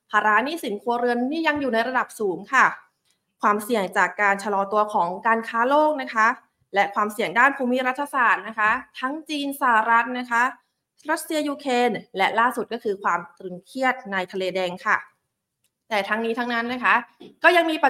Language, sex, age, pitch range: Thai, female, 20-39, 200-260 Hz